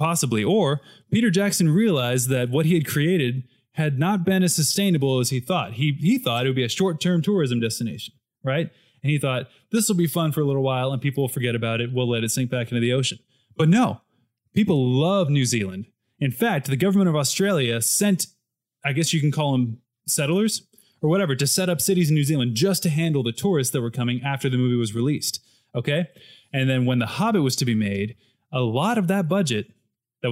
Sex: male